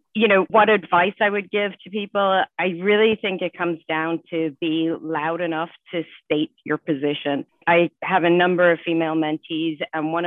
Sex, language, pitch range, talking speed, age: female, English, 150-175 Hz, 185 wpm, 40-59